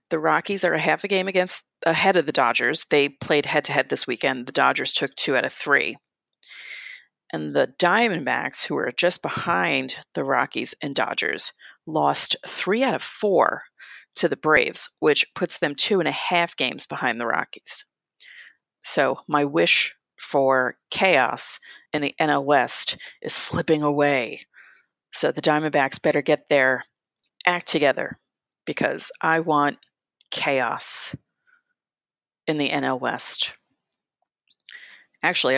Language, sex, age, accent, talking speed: English, female, 40-59, American, 145 wpm